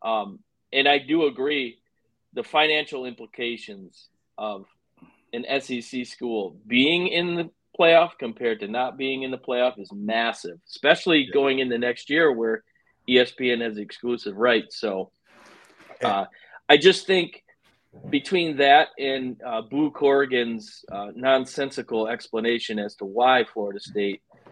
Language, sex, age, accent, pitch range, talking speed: English, male, 40-59, American, 115-155 Hz, 130 wpm